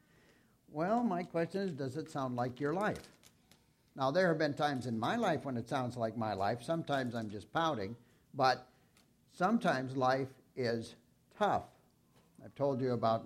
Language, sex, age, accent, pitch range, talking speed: English, male, 60-79, American, 115-145 Hz, 165 wpm